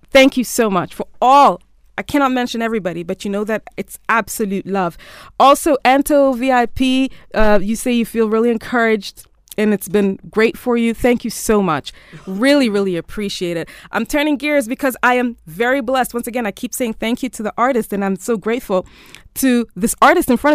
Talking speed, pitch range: 200 wpm, 200-255 Hz